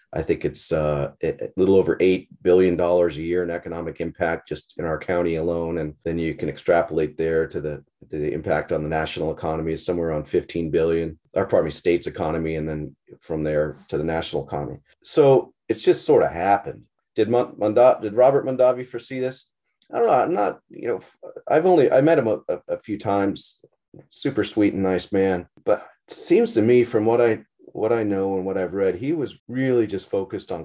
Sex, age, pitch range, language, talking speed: male, 40-59, 85-105 Hz, English, 210 wpm